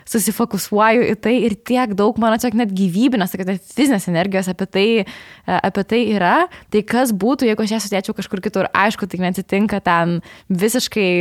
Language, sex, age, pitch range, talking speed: English, female, 20-39, 190-225 Hz, 175 wpm